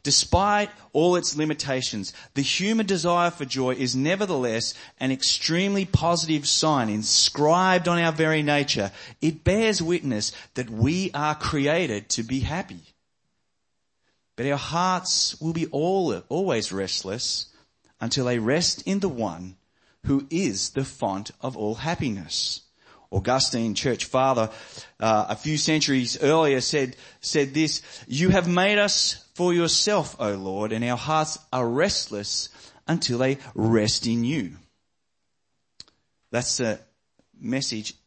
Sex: male